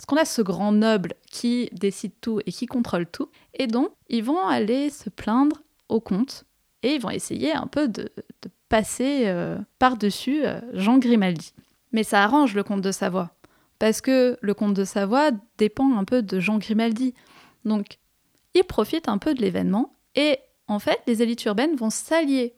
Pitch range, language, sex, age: 205-270 Hz, French, female, 20-39